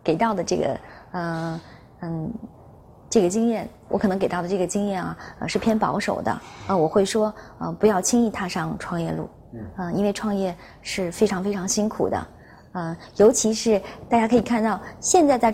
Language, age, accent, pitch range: Chinese, 20-39, native, 175-215 Hz